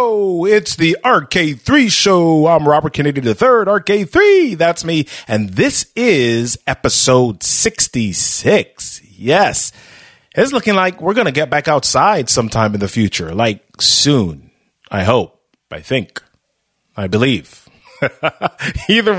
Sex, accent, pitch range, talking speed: male, American, 110-170 Hz, 120 wpm